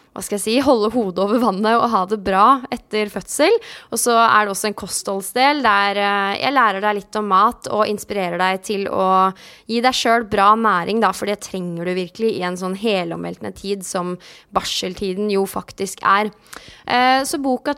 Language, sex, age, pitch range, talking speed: English, female, 20-39, 200-250 Hz, 180 wpm